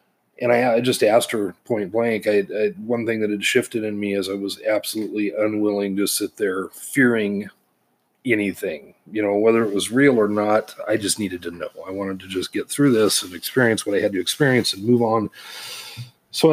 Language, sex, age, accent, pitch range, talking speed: English, male, 40-59, American, 105-130 Hz, 210 wpm